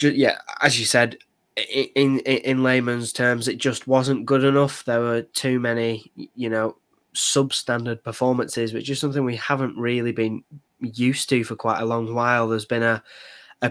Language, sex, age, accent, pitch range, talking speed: English, male, 10-29, British, 115-125 Hz, 175 wpm